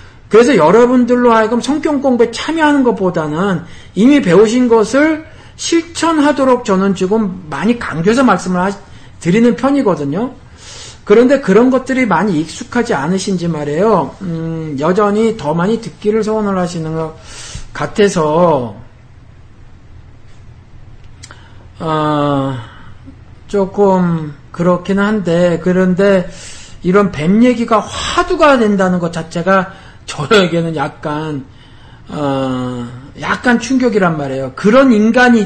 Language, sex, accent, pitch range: Korean, male, native, 140-220 Hz